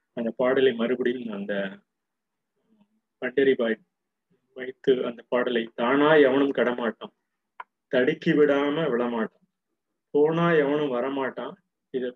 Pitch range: 125-150 Hz